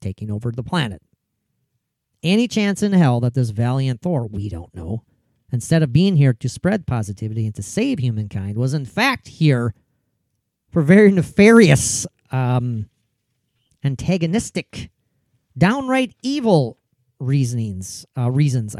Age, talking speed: 40-59, 130 wpm